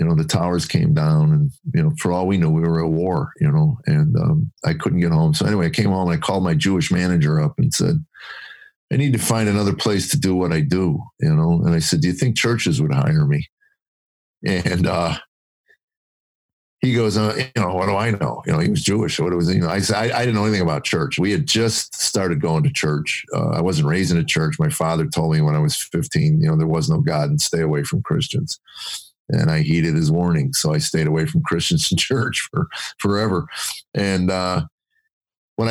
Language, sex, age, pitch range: English, male, 50-69, 90-155 Hz